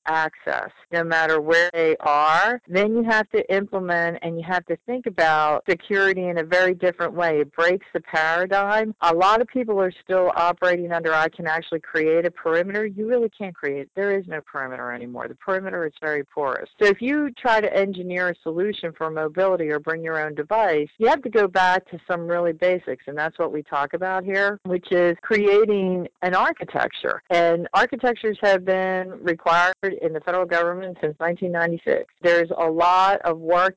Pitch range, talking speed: 160-190 Hz, 190 wpm